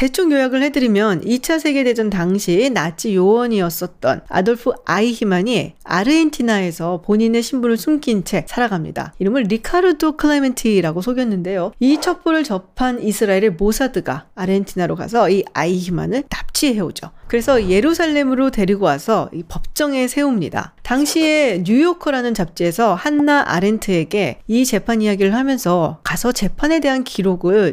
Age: 40-59